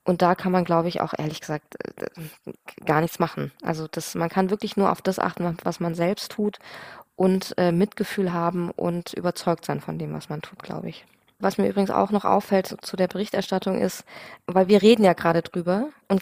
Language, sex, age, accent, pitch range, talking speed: German, female, 20-39, German, 175-210 Hz, 205 wpm